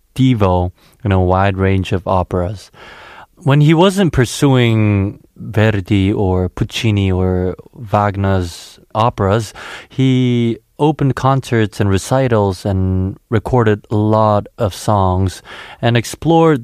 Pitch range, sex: 95-130 Hz, male